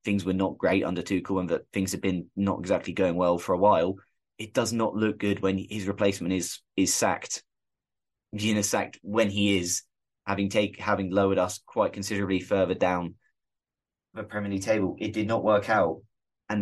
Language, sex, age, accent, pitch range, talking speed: English, male, 20-39, British, 95-105 Hz, 195 wpm